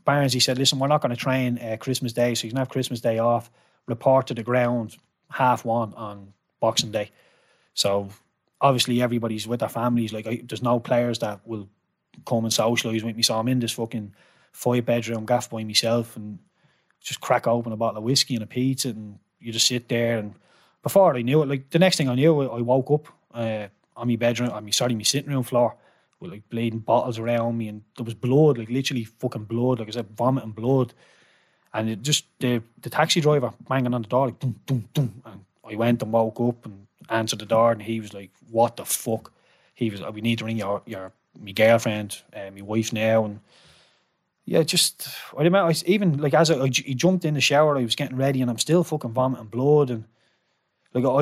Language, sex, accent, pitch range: English, male, Irish, 115-135 Hz